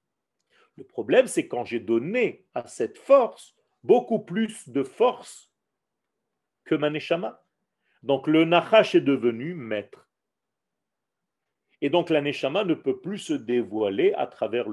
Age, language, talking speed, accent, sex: 40-59, French, 135 wpm, French, male